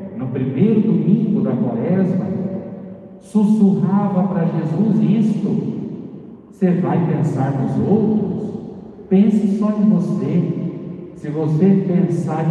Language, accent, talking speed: Portuguese, Brazilian, 100 wpm